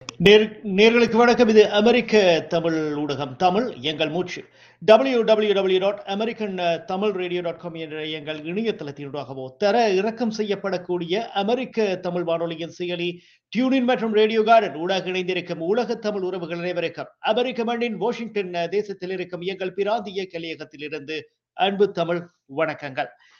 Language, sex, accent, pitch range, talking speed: Tamil, male, native, 155-205 Hz, 100 wpm